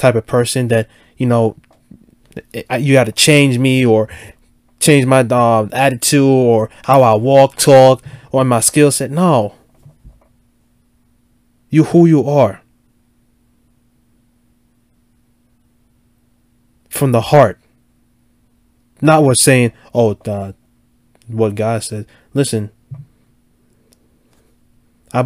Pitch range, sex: 115-130 Hz, male